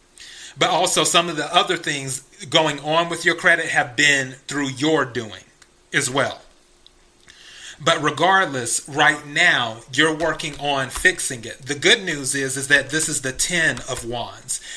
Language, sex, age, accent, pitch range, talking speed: English, male, 30-49, American, 135-170 Hz, 165 wpm